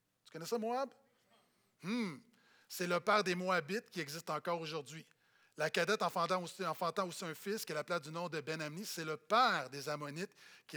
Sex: male